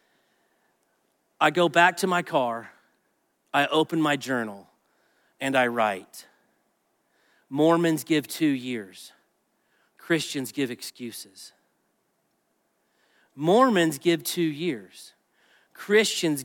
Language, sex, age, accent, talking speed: English, male, 40-59, American, 90 wpm